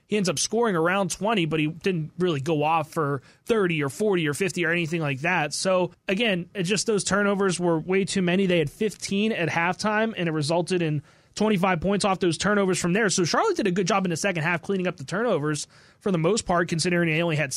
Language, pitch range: English, 160-195 Hz